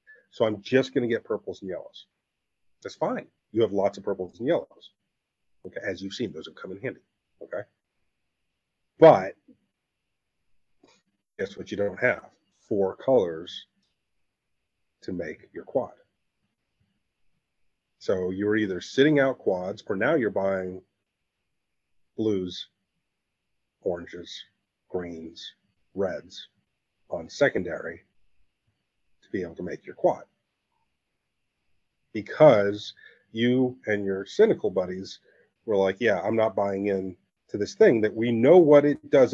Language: English